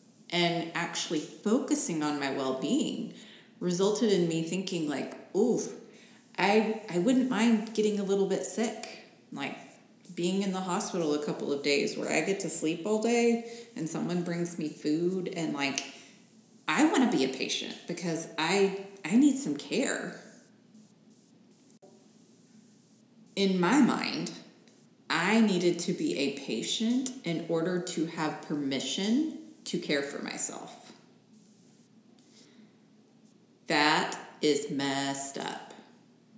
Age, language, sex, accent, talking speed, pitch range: 30-49, English, female, American, 125 wpm, 175-225 Hz